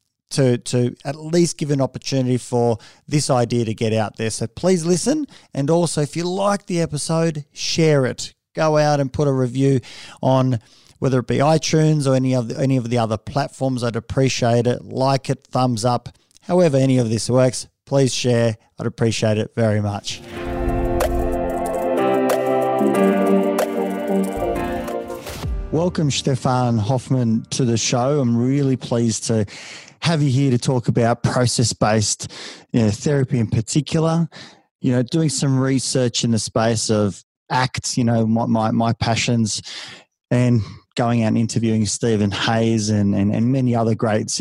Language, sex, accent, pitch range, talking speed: English, male, Australian, 110-135 Hz, 155 wpm